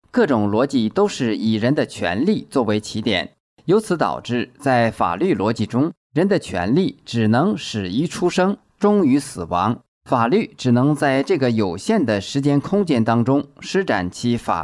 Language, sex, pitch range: Chinese, male, 110-150 Hz